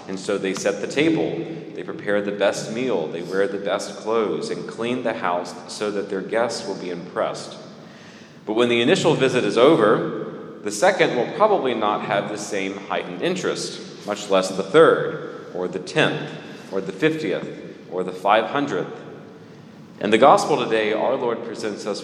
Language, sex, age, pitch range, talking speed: English, male, 40-59, 95-120 Hz, 180 wpm